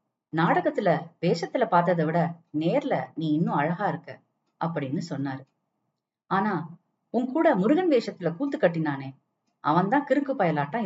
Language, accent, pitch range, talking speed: Tamil, native, 150-200 Hz, 115 wpm